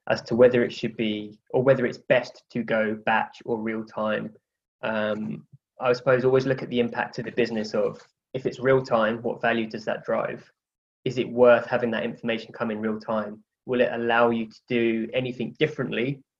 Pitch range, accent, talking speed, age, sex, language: 110-125 Hz, British, 200 wpm, 20-39, male, English